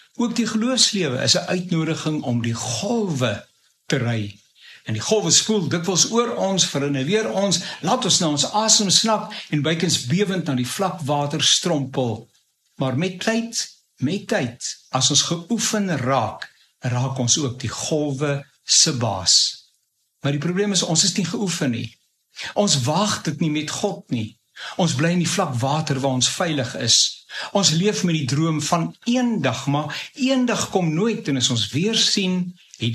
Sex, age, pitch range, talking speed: male, 60-79, 130-185 Hz, 170 wpm